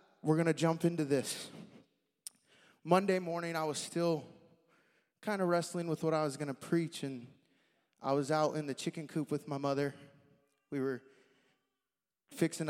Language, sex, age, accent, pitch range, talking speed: English, male, 20-39, American, 145-190 Hz, 165 wpm